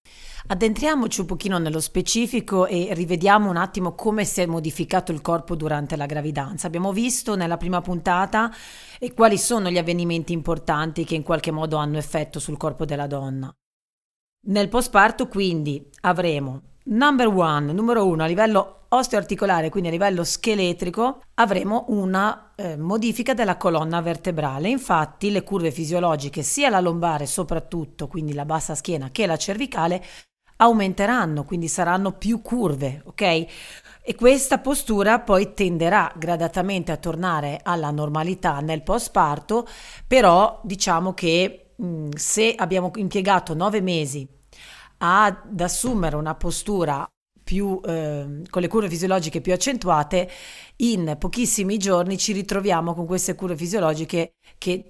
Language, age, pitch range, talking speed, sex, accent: Italian, 30-49, 165-205 Hz, 135 wpm, female, native